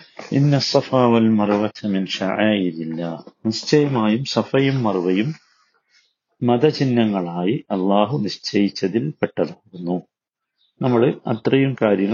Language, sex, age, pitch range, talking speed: Malayalam, male, 50-69, 100-135 Hz, 115 wpm